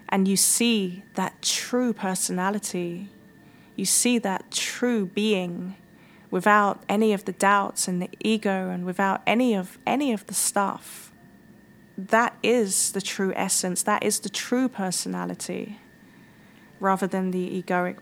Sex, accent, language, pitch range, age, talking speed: female, British, English, 190-210 Hz, 20-39, 135 wpm